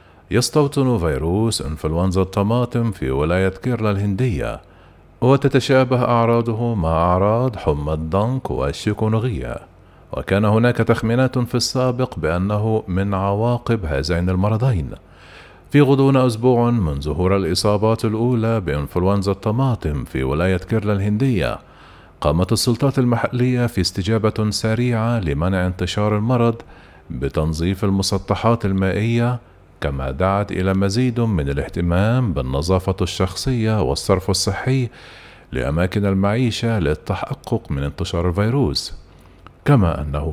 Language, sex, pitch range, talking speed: Arabic, male, 90-120 Hz, 100 wpm